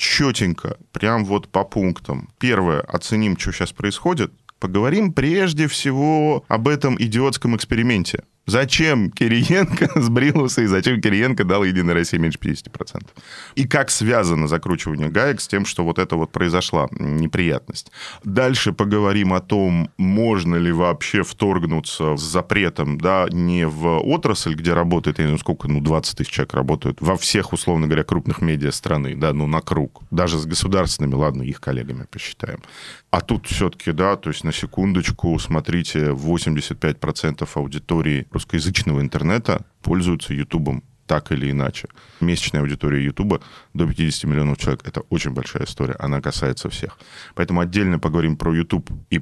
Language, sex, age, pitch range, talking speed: Russian, male, 20-39, 80-120 Hz, 150 wpm